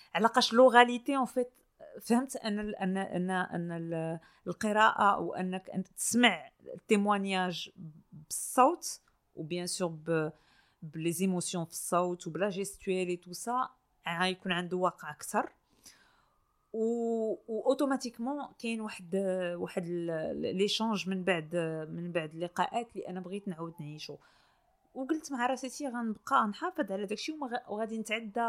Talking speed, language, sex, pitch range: 115 wpm, Arabic, female, 180-235 Hz